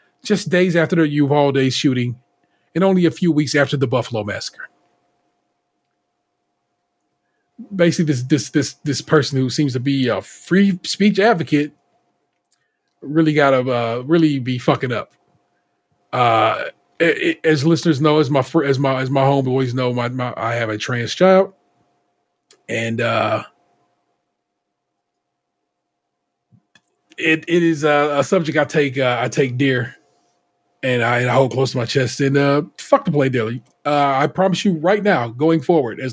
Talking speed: 160 wpm